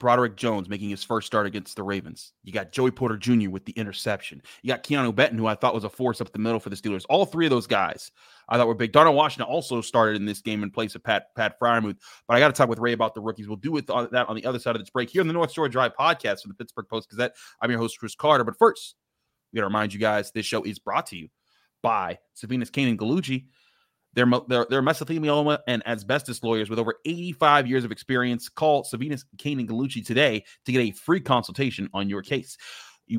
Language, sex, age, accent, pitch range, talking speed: English, male, 30-49, American, 115-150 Hz, 250 wpm